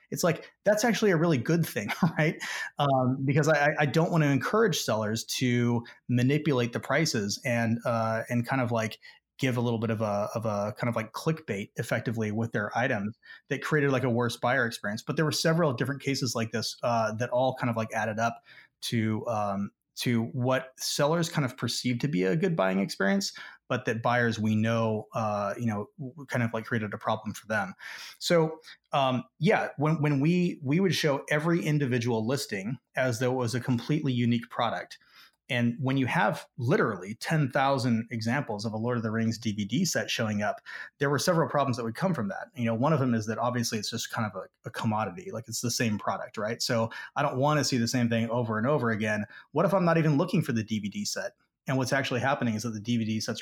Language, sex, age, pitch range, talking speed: English, male, 30-49, 115-145 Hz, 220 wpm